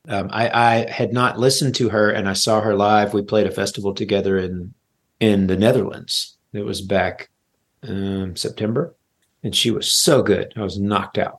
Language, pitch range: English, 95-115 Hz